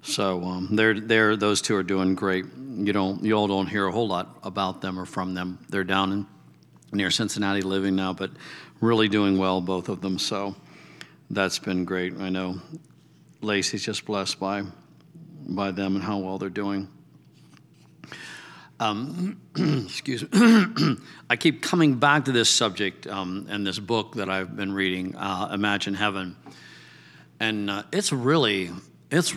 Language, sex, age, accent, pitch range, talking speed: English, male, 60-79, American, 95-115 Hz, 165 wpm